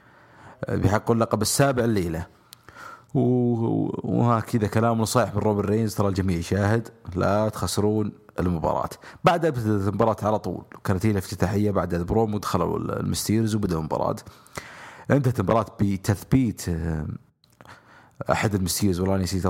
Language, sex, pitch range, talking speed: English, male, 95-115 Hz, 115 wpm